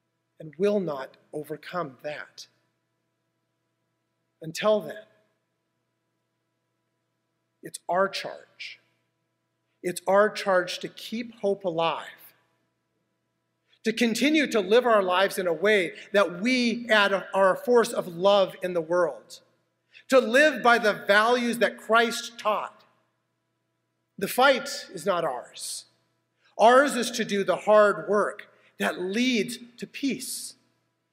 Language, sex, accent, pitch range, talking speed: English, male, American, 140-215 Hz, 115 wpm